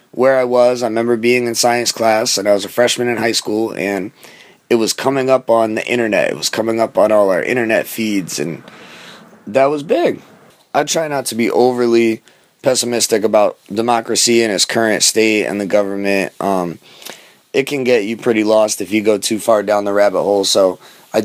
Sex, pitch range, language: male, 105-125 Hz, English